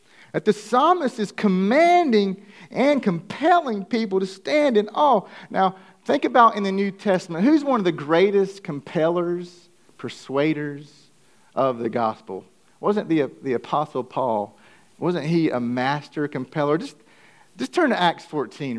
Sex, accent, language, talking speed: male, American, English, 145 wpm